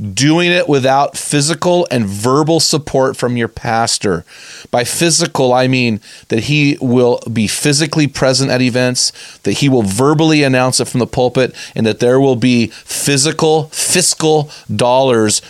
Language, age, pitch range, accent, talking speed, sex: English, 30-49, 115-145 Hz, American, 150 wpm, male